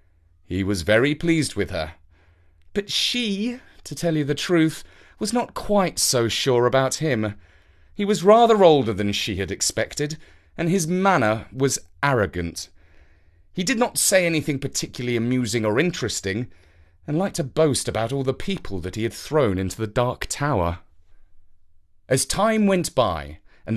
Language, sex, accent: English, male, British